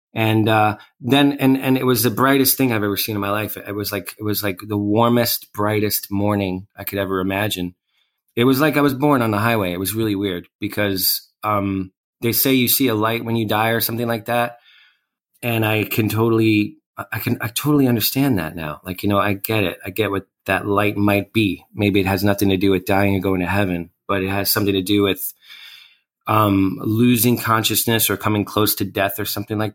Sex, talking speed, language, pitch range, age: male, 230 wpm, English, 100-125 Hz, 30-49